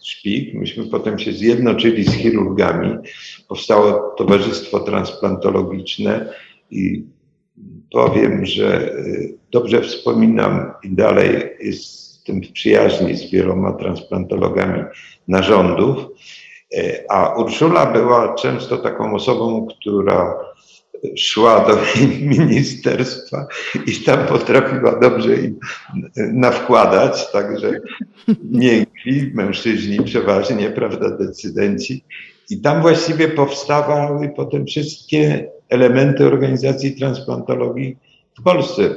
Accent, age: native, 50-69